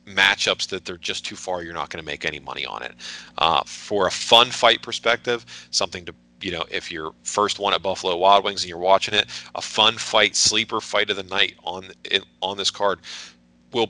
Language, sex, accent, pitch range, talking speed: English, male, American, 80-95 Hz, 215 wpm